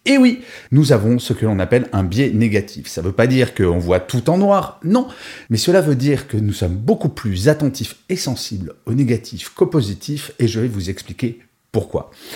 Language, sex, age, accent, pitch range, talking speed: French, male, 40-59, French, 100-150 Hz, 215 wpm